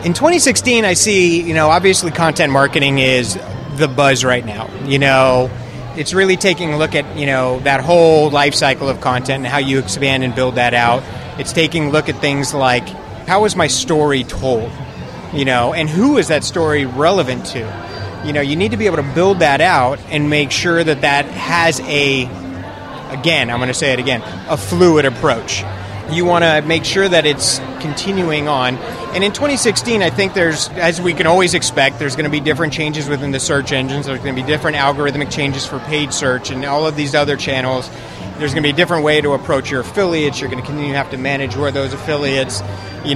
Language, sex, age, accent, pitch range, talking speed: English, male, 30-49, American, 130-160 Hz, 215 wpm